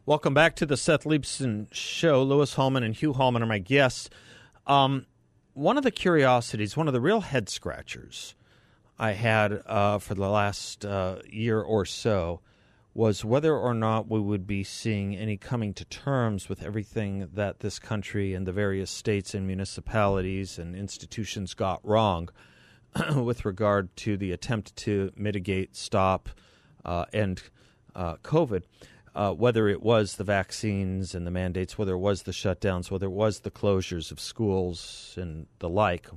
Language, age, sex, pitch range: English, 40-59, male, 95-120 Hz